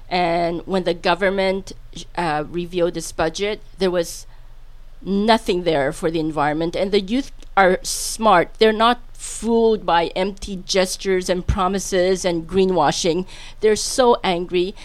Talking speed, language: 135 wpm, English